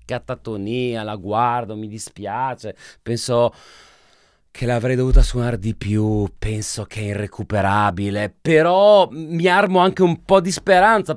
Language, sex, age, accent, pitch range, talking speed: Italian, male, 30-49, native, 105-155 Hz, 130 wpm